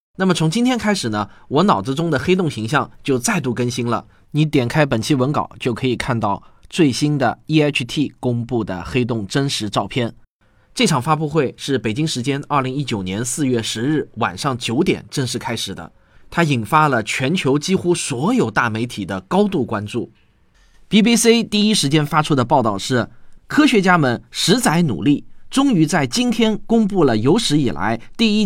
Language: Chinese